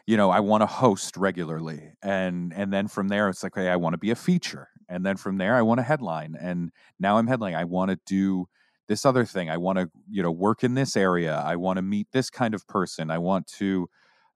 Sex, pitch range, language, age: male, 85-105 Hz, English, 40-59